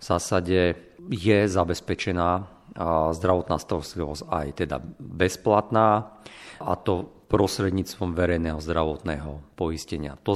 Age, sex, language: 40-59, male, Slovak